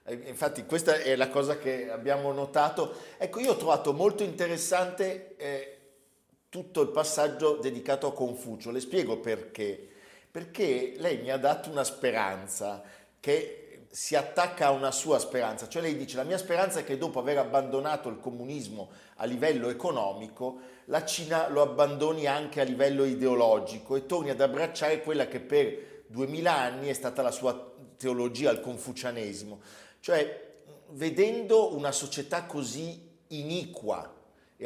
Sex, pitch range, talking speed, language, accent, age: male, 130-170 Hz, 145 wpm, Italian, native, 50-69